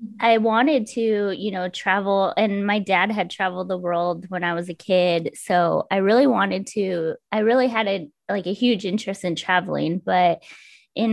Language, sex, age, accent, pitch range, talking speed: English, female, 20-39, American, 180-210 Hz, 190 wpm